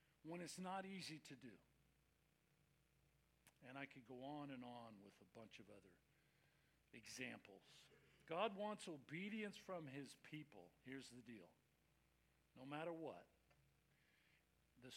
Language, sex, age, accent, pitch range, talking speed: English, male, 50-69, American, 120-155 Hz, 130 wpm